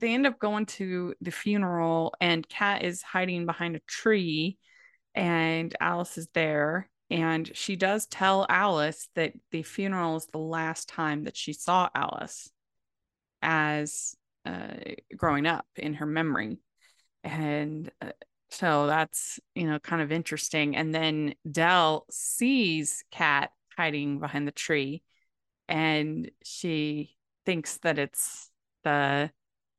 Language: English